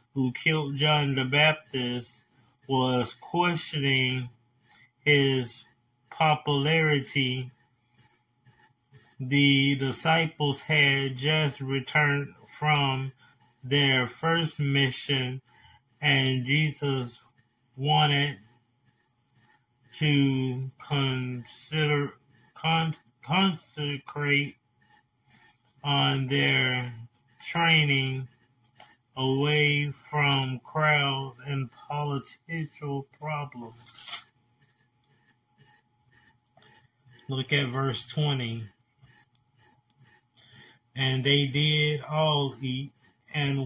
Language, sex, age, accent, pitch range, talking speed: English, male, 30-49, American, 125-145 Hz, 60 wpm